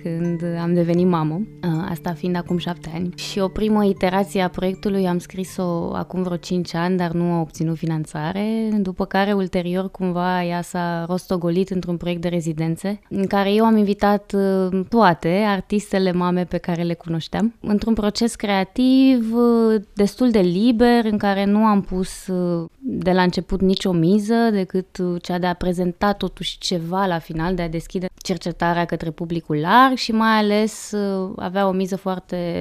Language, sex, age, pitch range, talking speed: Romanian, female, 20-39, 175-205 Hz, 160 wpm